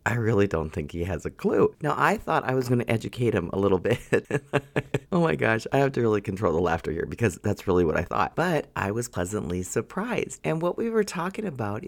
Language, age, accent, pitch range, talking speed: English, 40-59, American, 115-180 Hz, 245 wpm